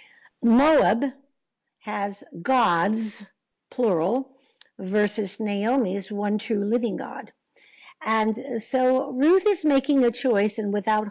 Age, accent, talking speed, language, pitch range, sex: 60-79, American, 105 wpm, English, 195-260 Hz, female